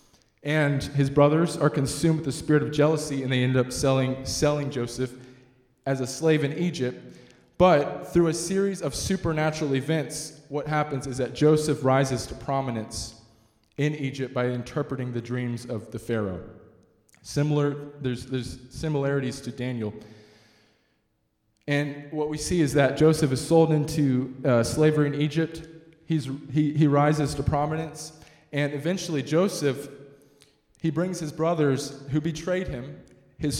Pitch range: 125-155 Hz